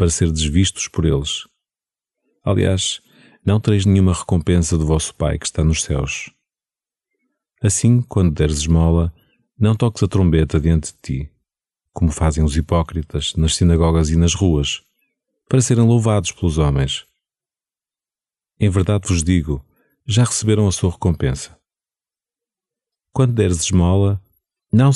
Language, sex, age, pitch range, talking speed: Portuguese, male, 30-49, 80-110 Hz, 130 wpm